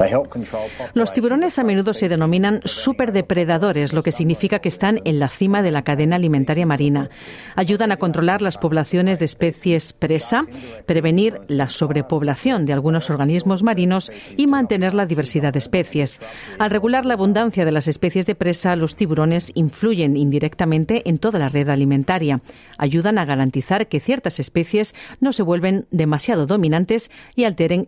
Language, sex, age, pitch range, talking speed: Spanish, female, 40-59, 150-205 Hz, 155 wpm